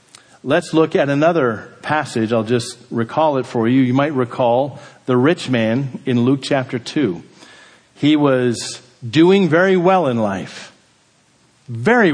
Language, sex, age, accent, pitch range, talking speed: English, male, 50-69, American, 120-170 Hz, 145 wpm